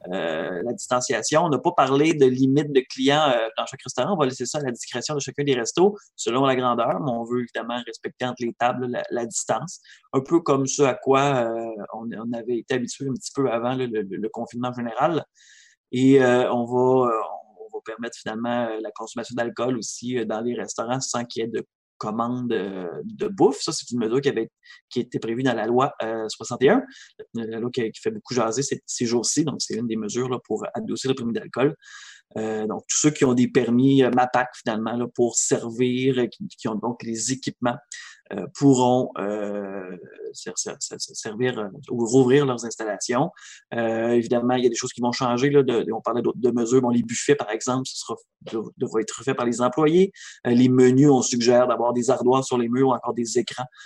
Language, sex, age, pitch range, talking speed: French, male, 20-39, 115-130 Hz, 210 wpm